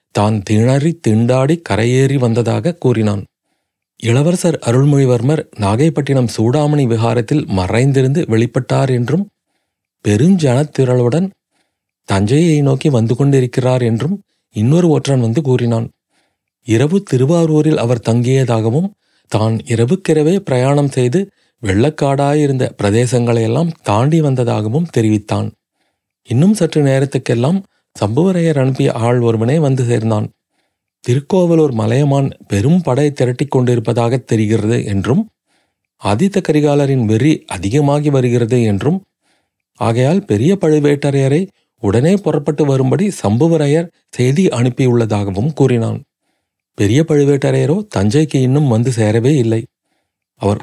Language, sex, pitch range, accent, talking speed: Tamil, male, 115-155 Hz, native, 90 wpm